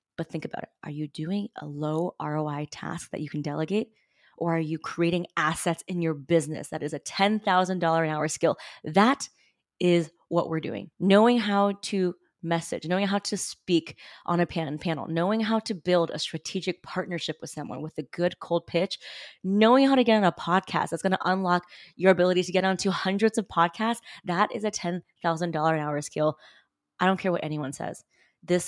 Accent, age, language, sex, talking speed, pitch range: American, 20-39, English, female, 195 wpm, 160-190 Hz